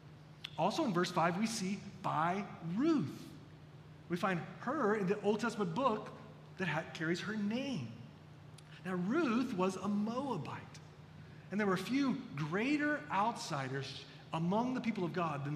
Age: 40-59